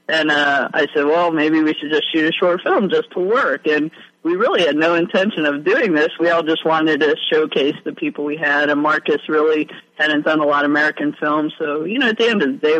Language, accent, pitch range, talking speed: English, American, 150-195 Hz, 255 wpm